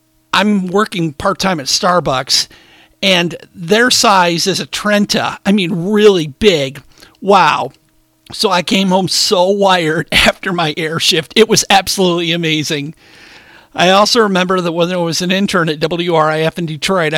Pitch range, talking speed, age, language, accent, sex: 165-205 Hz, 150 wpm, 40-59, English, American, male